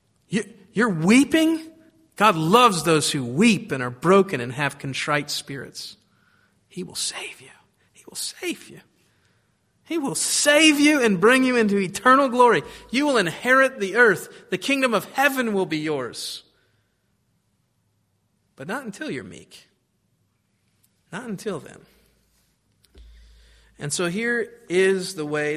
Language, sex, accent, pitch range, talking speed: English, male, American, 125-195 Hz, 135 wpm